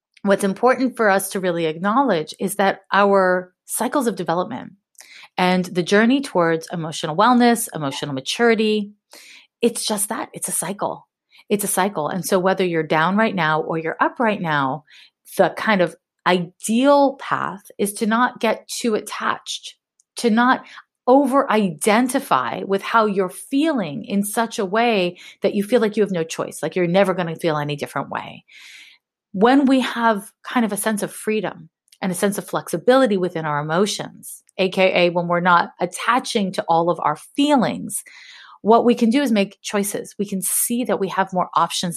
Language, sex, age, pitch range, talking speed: English, female, 30-49, 175-230 Hz, 175 wpm